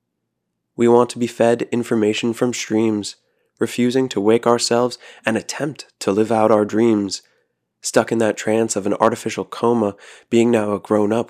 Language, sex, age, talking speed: English, male, 20-39, 165 wpm